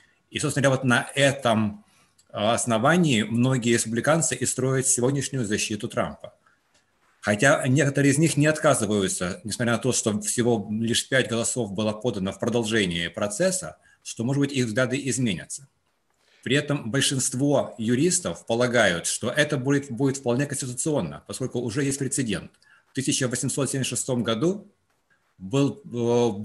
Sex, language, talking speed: male, English, 130 wpm